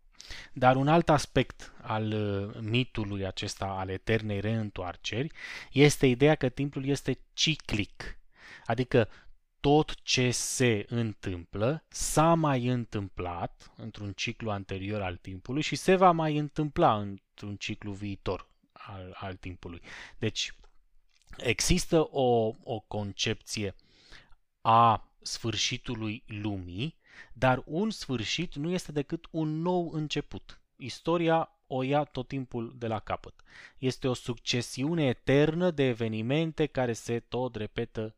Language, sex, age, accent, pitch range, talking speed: Romanian, male, 20-39, native, 105-140 Hz, 120 wpm